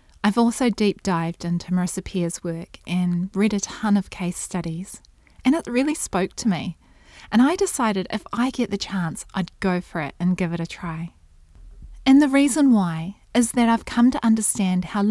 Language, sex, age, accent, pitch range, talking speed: English, female, 30-49, Australian, 180-230 Hz, 195 wpm